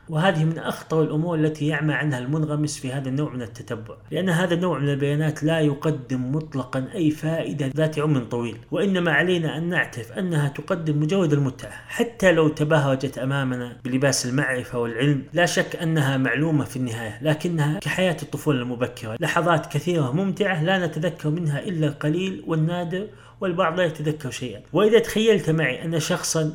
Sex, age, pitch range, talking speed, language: male, 30-49, 135-175 Hz, 155 wpm, Arabic